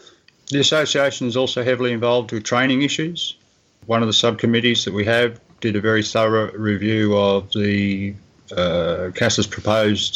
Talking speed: 155 wpm